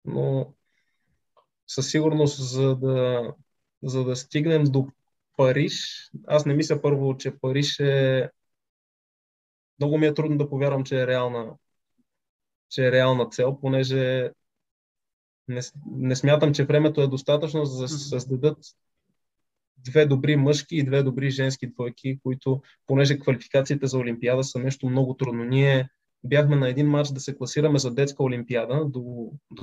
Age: 20-39